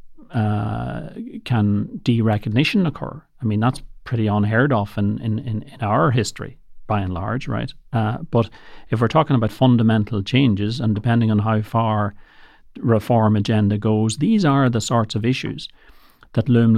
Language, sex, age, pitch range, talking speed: English, male, 40-59, 105-120 Hz, 155 wpm